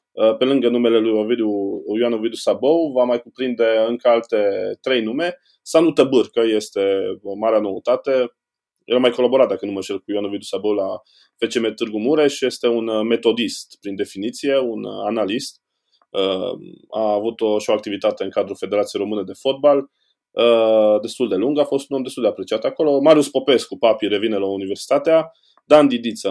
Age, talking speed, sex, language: 20-39, 165 wpm, male, Romanian